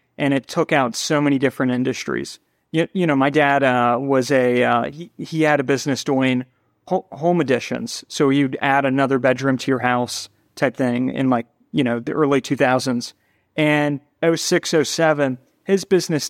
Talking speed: 175 wpm